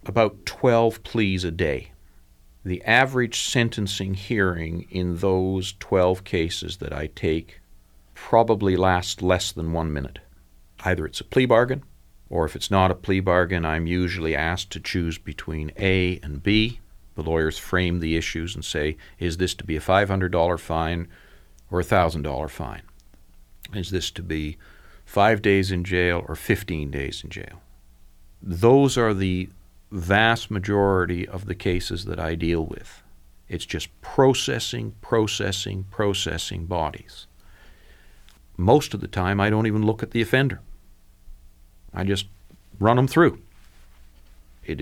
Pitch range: 80-100 Hz